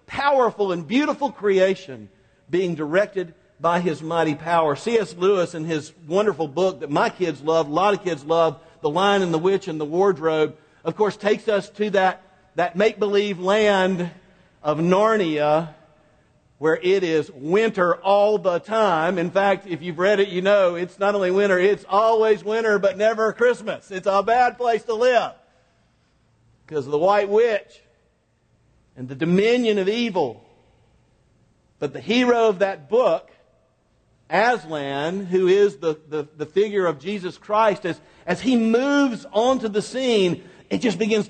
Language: English